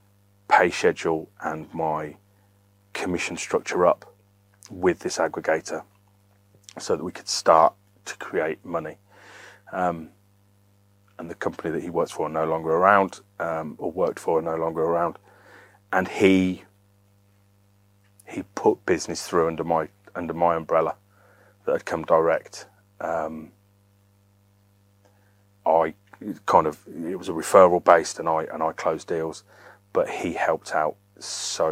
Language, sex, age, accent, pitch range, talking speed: English, male, 30-49, British, 90-100 Hz, 140 wpm